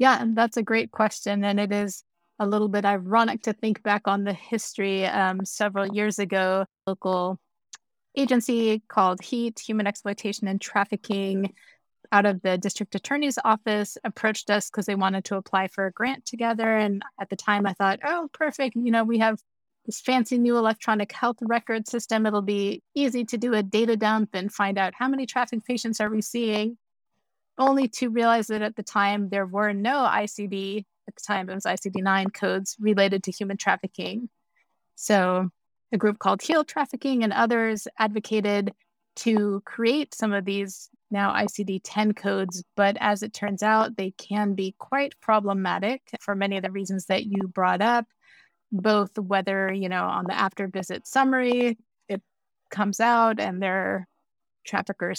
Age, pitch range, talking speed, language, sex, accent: 30-49, 195-230 Hz, 175 wpm, English, female, American